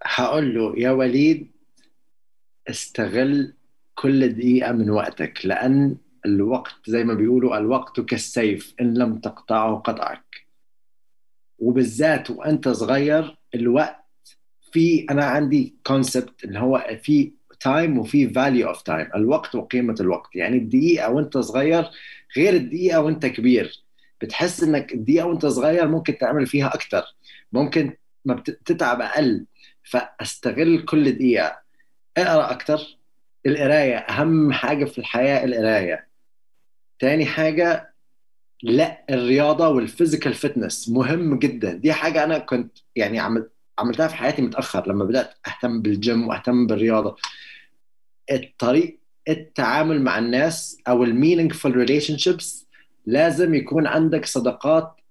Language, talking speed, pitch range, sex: Arabic, 115 wpm, 120-160 Hz, male